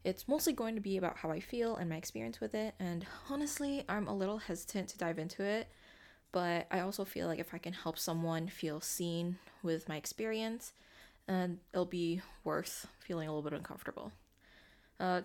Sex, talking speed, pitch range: female, 195 wpm, 170-220 Hz